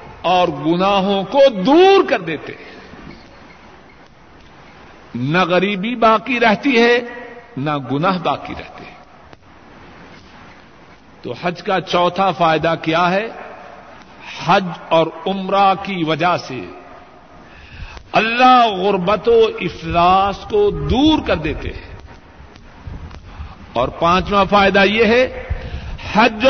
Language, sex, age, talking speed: Urdu, male, 60-79, 95 wpm